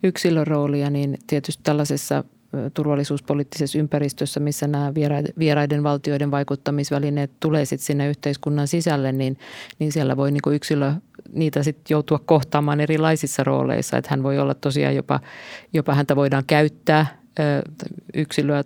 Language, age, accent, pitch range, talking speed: Finnish, 50-69, native, 145-155 Hz, 140 wpm